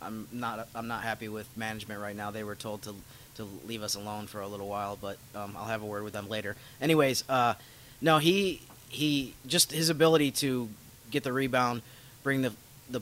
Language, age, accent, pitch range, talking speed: English, 30-49, American, 115-130 Hz, 205 wpm